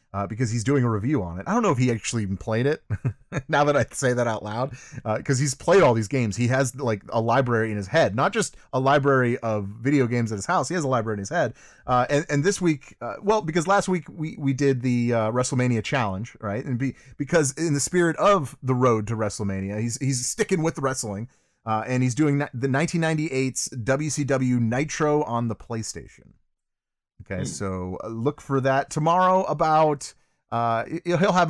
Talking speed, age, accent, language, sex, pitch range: 210 wpm, 30-49, American, English, male, 110-150 Hz